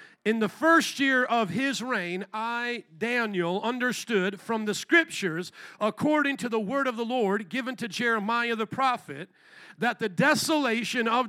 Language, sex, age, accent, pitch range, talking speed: English, male, 50-69, American, 190-245 Hz, 155 wpm